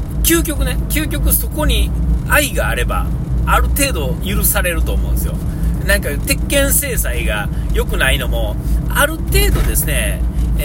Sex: male